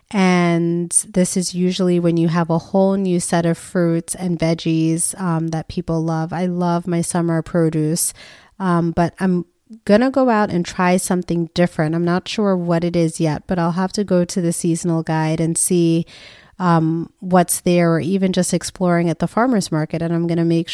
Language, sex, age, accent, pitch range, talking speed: English, female, 30-49, American, 165-185 Hz, 200 wpm